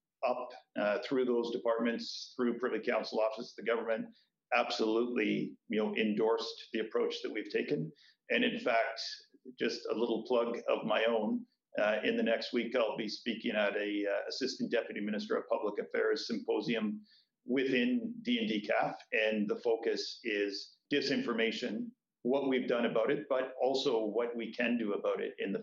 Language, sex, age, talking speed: English, male, 50-69, 165 wpm